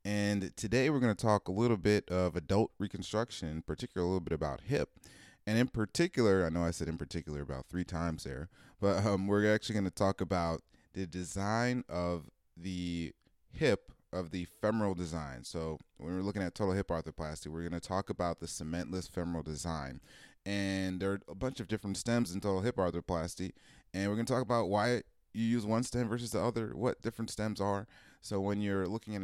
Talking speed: 205 wpm